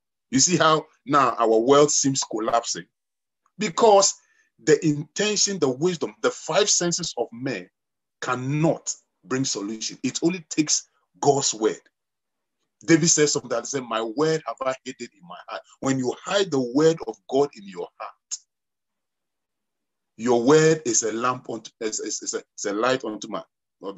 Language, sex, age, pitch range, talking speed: English, male, 40-59, 135-185 Hz, 140 wpm